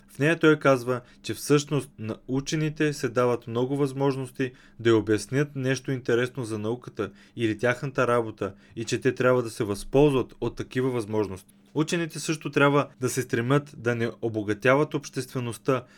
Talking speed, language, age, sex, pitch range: 155 wpm, Bulgarian, 20-39, male, 110-140 Hz